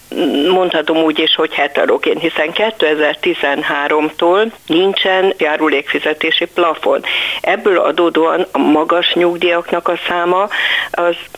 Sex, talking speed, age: female, 95 wpm, 60-79